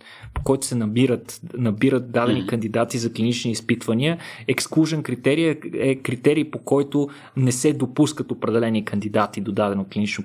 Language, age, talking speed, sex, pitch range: Bulgarian, 20-39, 140 wpm, male, 115-145 Hz